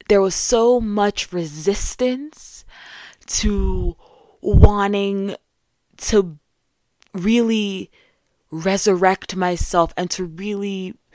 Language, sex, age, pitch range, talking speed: English, female, 20-39, 160-200 Hz, 75 wpm